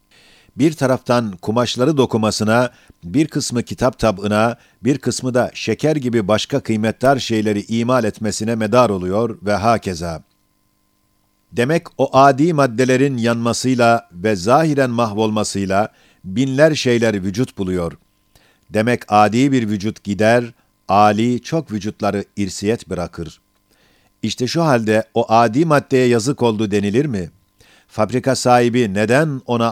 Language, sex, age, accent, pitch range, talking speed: Turkish, male, 50-69, native, 105-130 Hz, 115 wpm